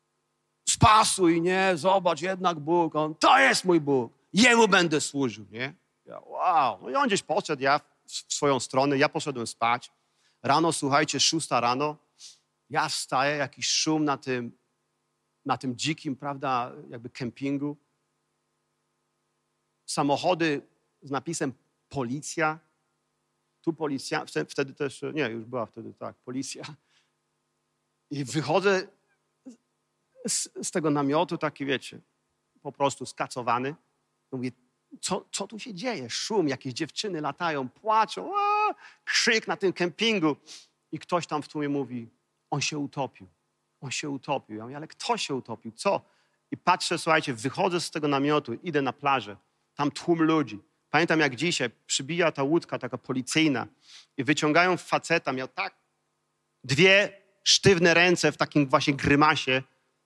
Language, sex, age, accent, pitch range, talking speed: Polish, male, 40-59, native, 130-170 Hz, 135 wpm